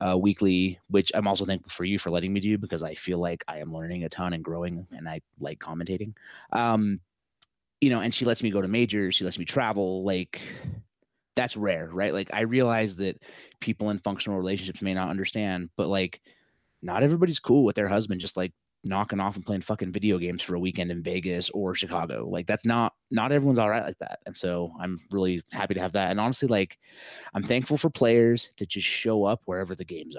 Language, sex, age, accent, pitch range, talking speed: English, male, 30-49, American, 95-115 Hz, 220 wpm